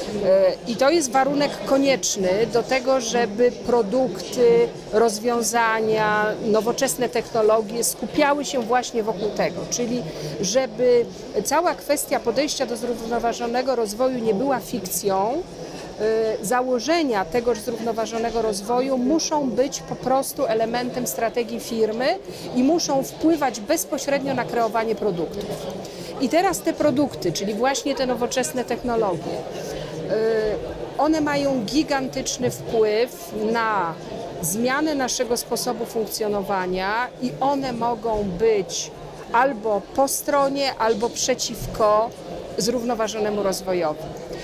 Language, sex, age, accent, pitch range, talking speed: Polish, female, 40-59, native, 215-265 Hz, 100 wpm